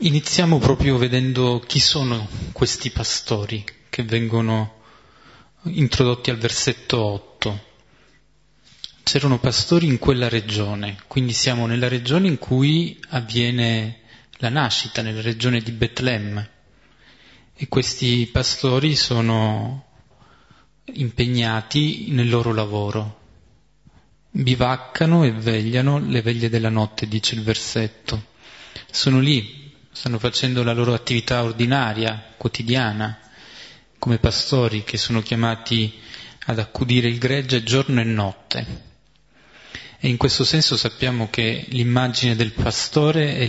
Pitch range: 110-130 Hz